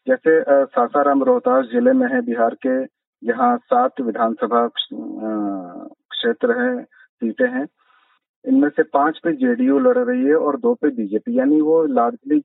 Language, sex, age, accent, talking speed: Hindi, male, 40-59, native, 145 wpm